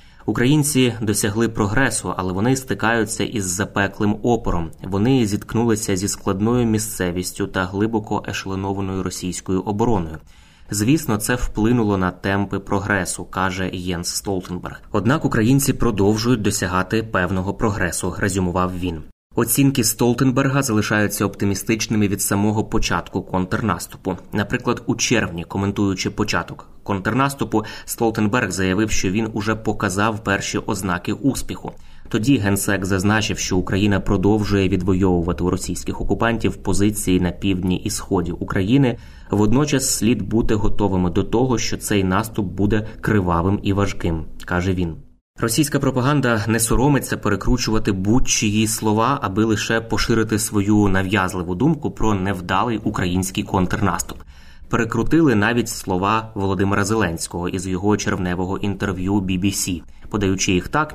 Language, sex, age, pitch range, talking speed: Ukrainian, male, 20-39, 95-110 Hz, 120 wpm